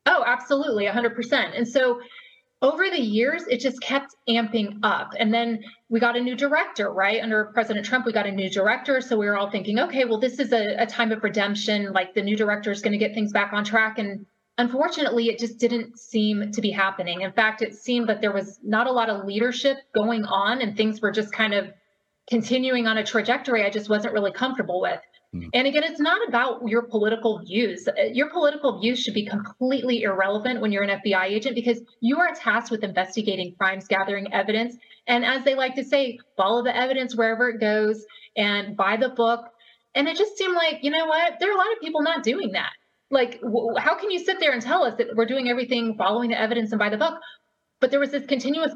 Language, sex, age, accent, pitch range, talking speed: English, female, 30-49, American, 215-255 Hz, 225 wpm